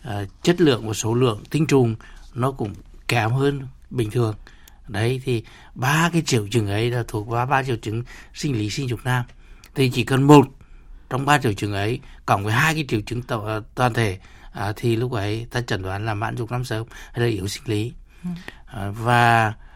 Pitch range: 105-130 Hz